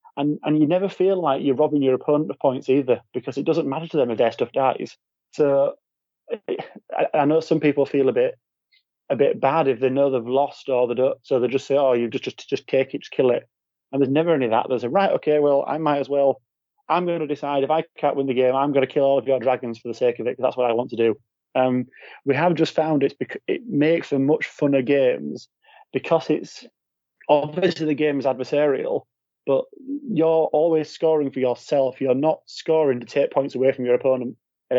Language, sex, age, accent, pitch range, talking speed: English, male, 30-49, British, 125-150 Hz, 235 wpm